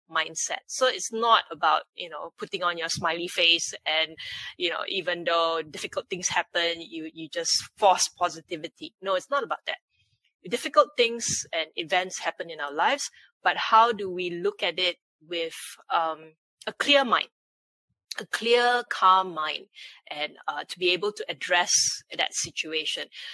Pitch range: 170-230 Hz